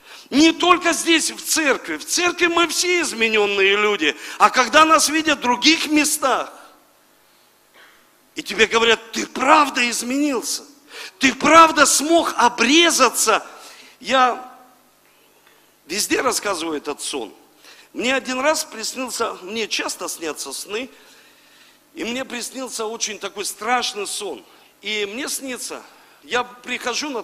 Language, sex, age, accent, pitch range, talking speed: Russian, male, 50-69, native, 240-310 Hz, 120 wpm